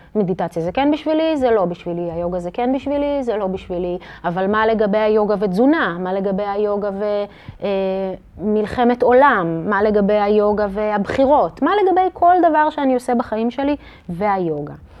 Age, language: 30-49, Hebrew